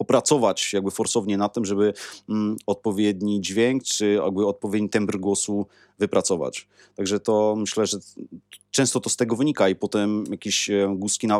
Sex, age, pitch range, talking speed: male, 30-49, 100-120 Hz, 145 wpm